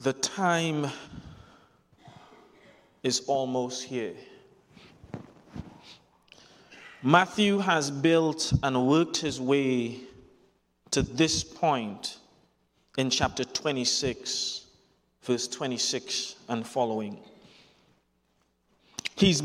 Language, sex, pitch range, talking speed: English, male, 135-205 Hz, 70 wpm